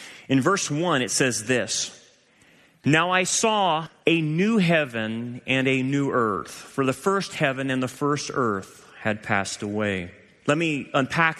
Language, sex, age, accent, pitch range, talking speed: English, male, 30-49, American, 120-150 Hz, 160 wpm